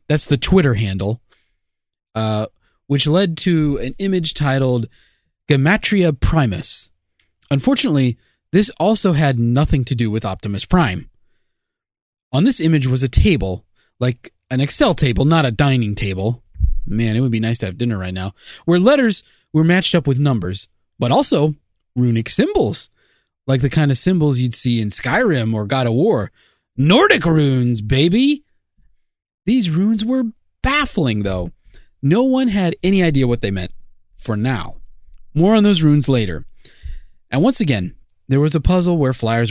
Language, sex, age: English, male, 30-49